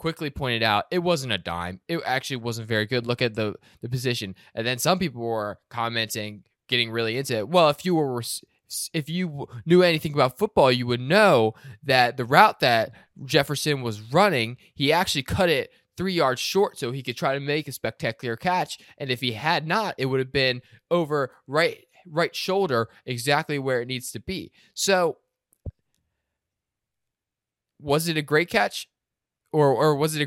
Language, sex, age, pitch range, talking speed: English, male, 20-39, 115-150 Hz, 185 wpm